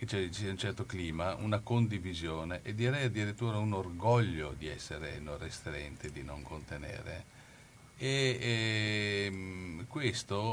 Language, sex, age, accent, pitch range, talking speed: Italian, male, 50-69, native, 100-125 Hz, 120 wpm